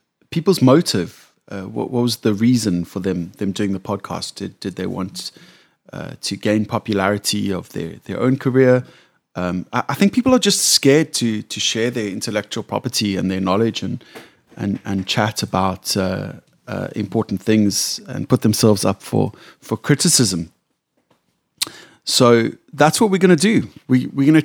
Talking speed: 170 wpm